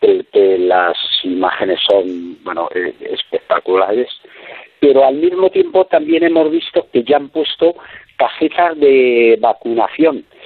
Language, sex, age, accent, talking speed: Spanish, male, 50-69, Spanish, 115 wpm